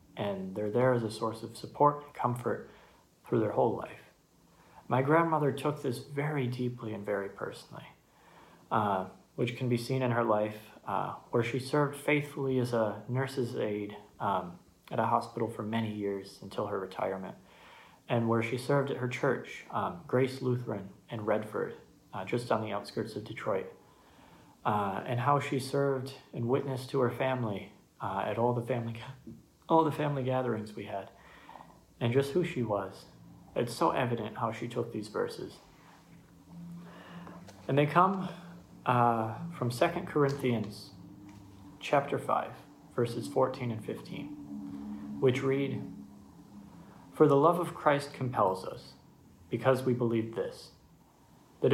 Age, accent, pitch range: 30-49, American, 110-140 Hz